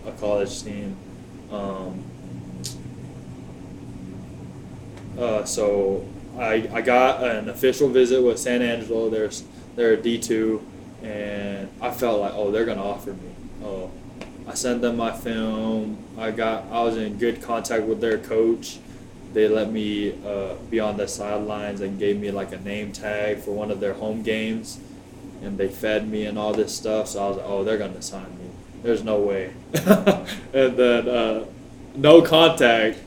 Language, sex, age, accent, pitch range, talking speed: English, male, 20-39, American, 105-130 Hz, 160 wpm